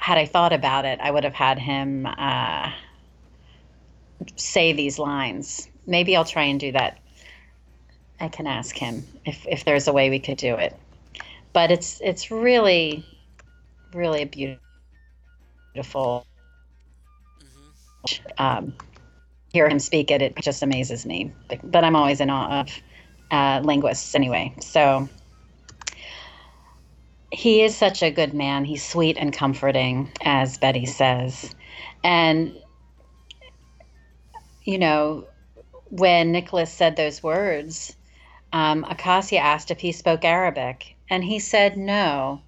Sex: female